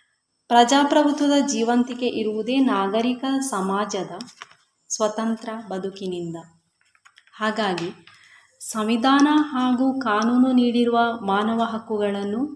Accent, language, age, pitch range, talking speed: native, Kannada, 20-39, 195-240 Hz, 65 wpm